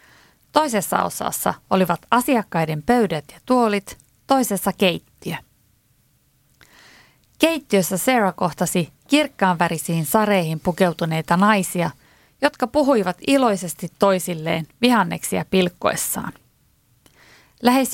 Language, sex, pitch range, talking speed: Finnish, female, 170-230 Hz, 75 wpm